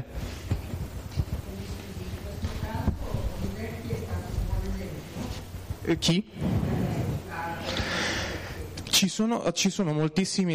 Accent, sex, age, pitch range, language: native, male, 20-39, 125-165 Hz, Italian